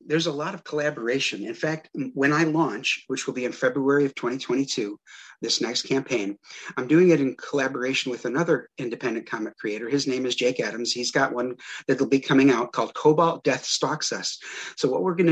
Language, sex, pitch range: English, male, 125-150 Hz